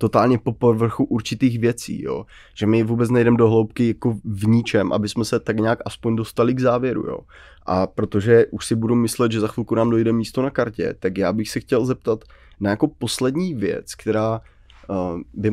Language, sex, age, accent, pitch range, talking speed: Czech, male, 20-39, native, 100-115 Hz, 200 wpm